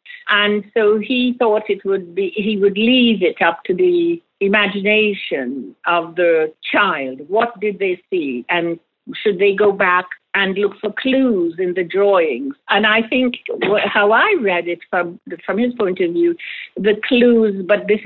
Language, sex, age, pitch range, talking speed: English, female, 60-79, 185-230 Hz, 170 wpm